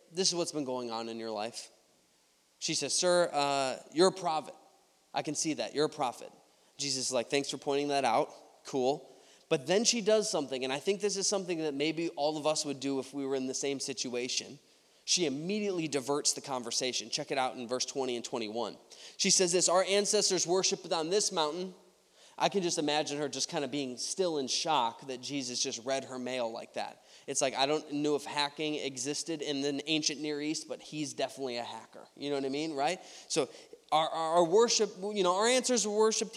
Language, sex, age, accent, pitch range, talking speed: English, male, 20-39, American, 130-185 Hz, 220 wpm